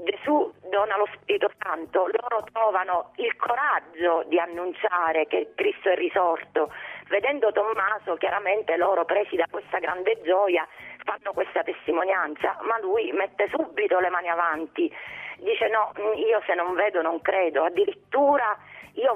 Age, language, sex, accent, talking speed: 40-59, Italian, female, native, 140 wpm